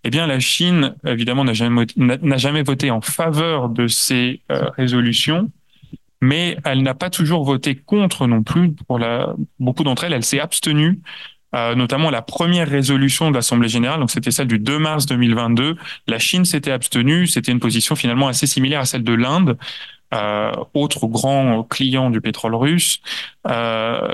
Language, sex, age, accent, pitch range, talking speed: French, male, 20-39, French, 120-150 Hz, 170 wpm